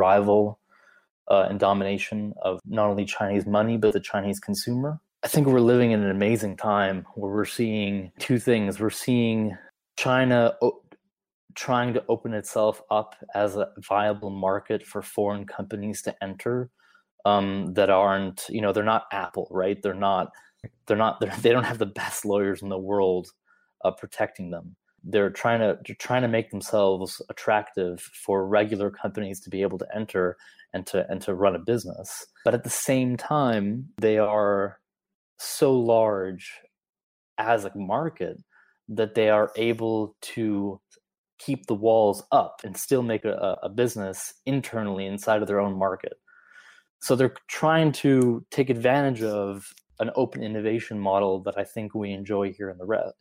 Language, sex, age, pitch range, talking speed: English, male, 20-39, 100-115 Hz, 165 wpm